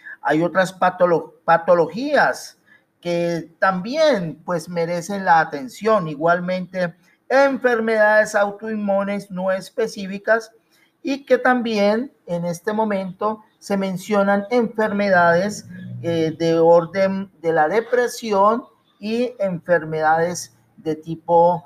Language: Spanish